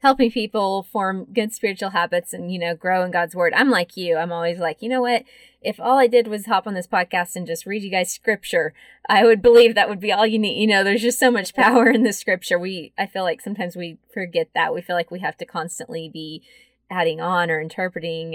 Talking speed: 250 wpm